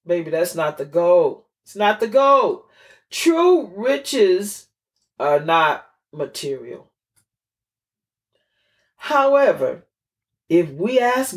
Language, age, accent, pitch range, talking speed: English, 40-59, American, 155-245 Hz, 95 wpm